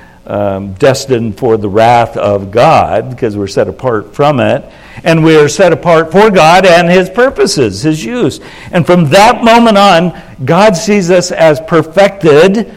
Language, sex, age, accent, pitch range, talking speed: English, male, 60-79, American, 125-165 Hz, 165 wpm